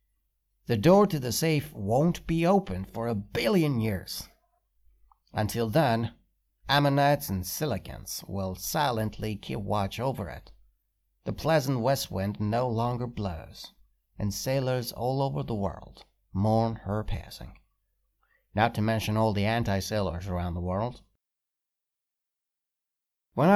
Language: Persian